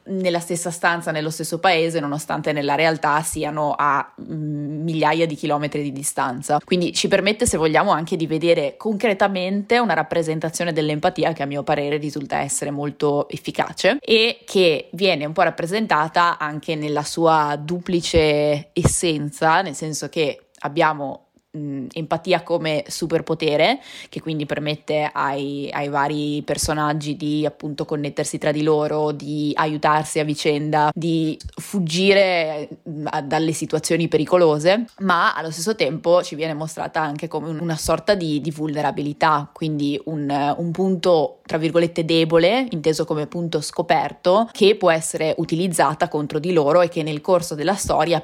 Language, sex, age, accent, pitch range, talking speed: Italian, female, 20-39, native, 150-175 Hz, 140 wpm